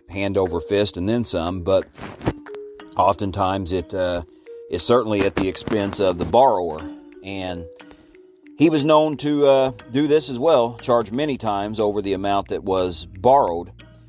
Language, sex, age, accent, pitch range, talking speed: English, male, 40-59, American, 100-125 Hz, 160 wpm